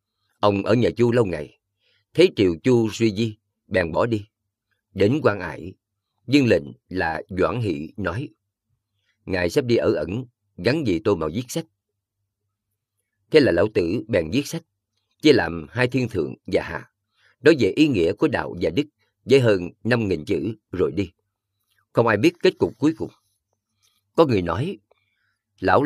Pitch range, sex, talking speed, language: 100-115 Hz, male, 170 wpm, Vietnamese